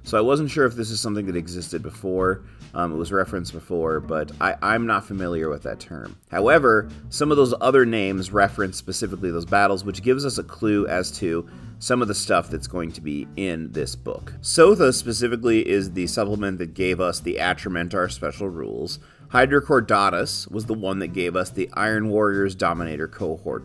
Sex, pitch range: male, 90-120 Hz